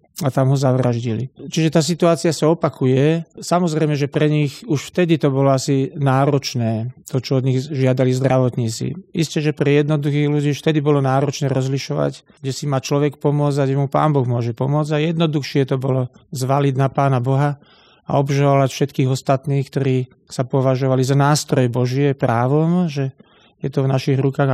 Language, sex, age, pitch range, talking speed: Slovak, male, 40-59, 135-150 Hz, 175 wpm